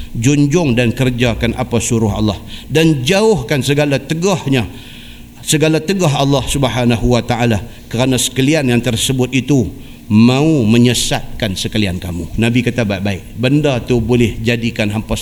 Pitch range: 110-135 Hz